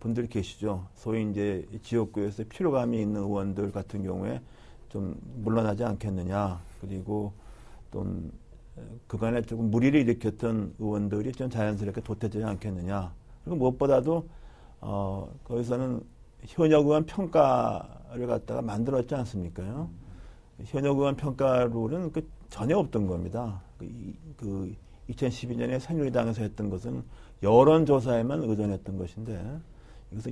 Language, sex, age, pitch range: Korean, male, 50-69, 100-120 Hz